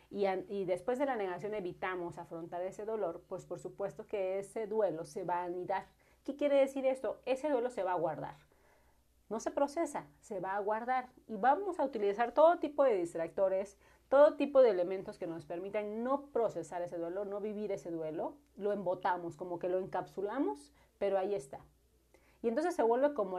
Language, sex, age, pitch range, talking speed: Spanish, female, 40-59, 180-235 Hz, 190 wpm